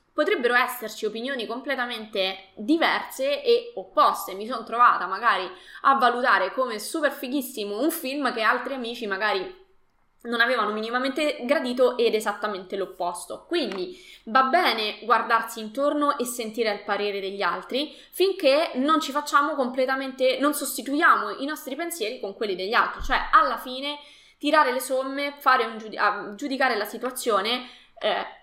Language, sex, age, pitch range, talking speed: Italian, female, 20-39, 220-290 Hz, 140 wpm